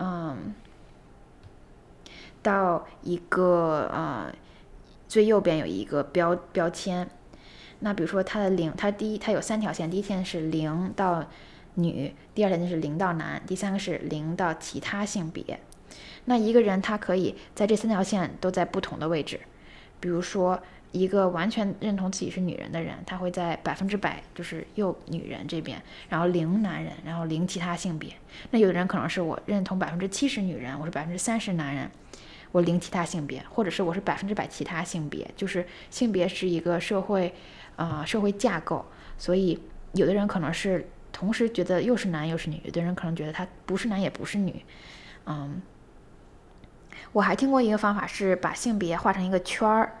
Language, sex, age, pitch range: English, female, 10-29, 165-200 Hz